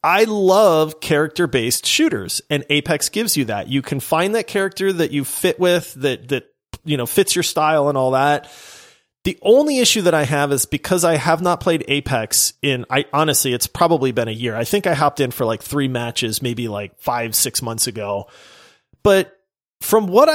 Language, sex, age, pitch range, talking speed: English, male, 30-49, 135-185 Hz, 200 wpm